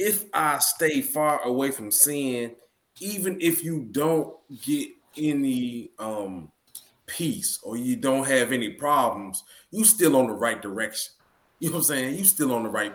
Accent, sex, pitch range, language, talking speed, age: American, male, 110-140 Hz, English, 170 wpm, 20-39